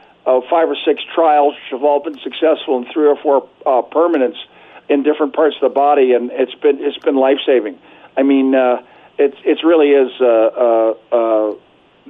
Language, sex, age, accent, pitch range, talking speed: English, male, 50-69, American, 135-185 Hz, 195 wpm